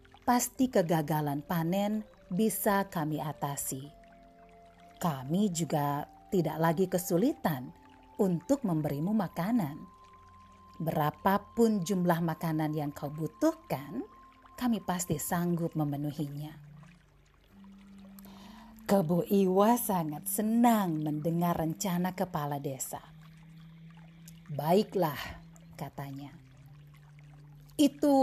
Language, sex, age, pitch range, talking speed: Indonesian, female, 40-59, 155-195 Hz, 75 wpm